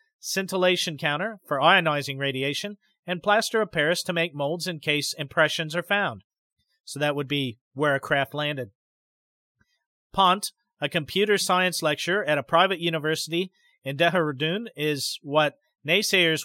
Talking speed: 140 wpm